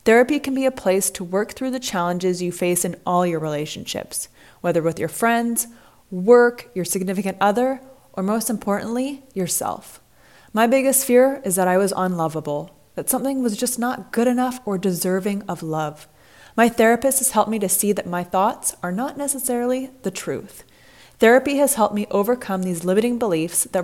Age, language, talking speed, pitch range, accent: 20-39, English, 180 wpm, 180-245 Hz, American